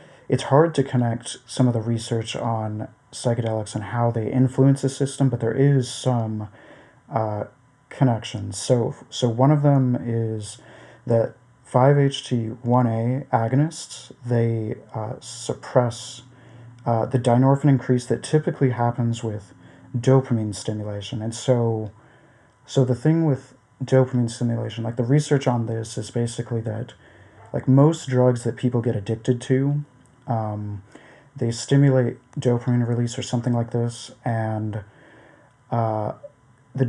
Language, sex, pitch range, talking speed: English, male, 115-130 Hz, 130 wpm